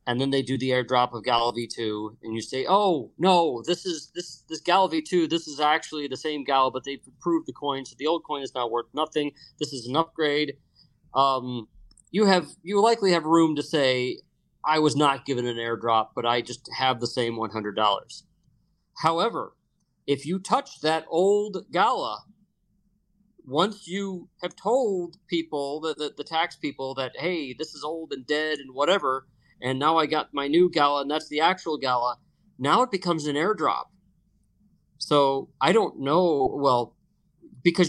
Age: 40-59